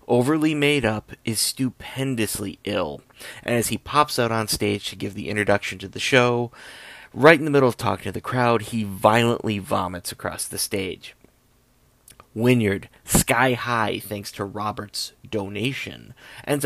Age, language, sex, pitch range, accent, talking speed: 30-49, English, male, 100-125 Hz, American, 150 wpm